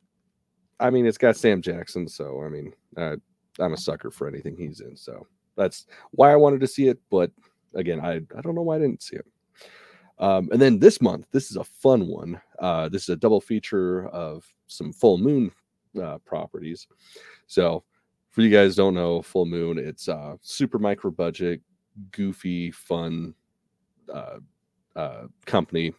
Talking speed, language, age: 175 wpm, English, 30-49